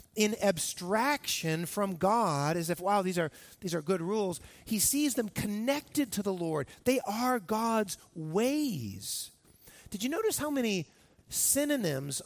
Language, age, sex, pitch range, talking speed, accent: English, 40-59, male, 165-235 Hz, 145 wpm, American